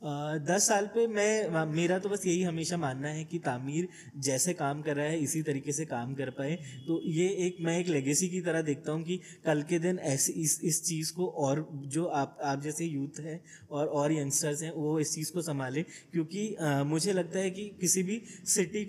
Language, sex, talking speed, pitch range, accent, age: Hindi, male, 210 wpm, 145-175 Hz, native, 20-39